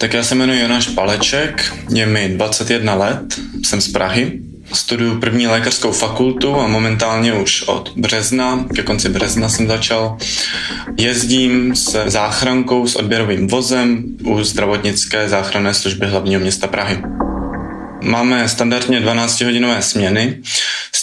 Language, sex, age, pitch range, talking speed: Czech, male, 20-39, 105-120 Hz, 130 wpm